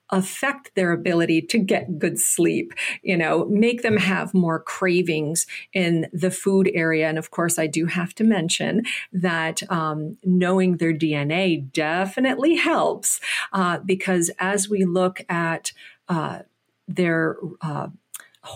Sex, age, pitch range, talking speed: female, 50-69, 165-195 Hz, 135 wpm